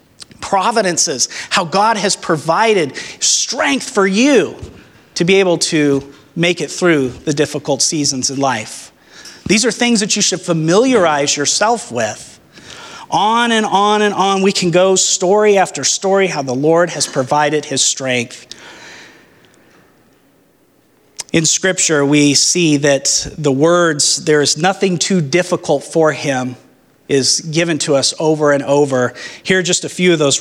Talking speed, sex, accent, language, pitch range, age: 150 wpm, male, American, English, 145-185 Hz, 30-49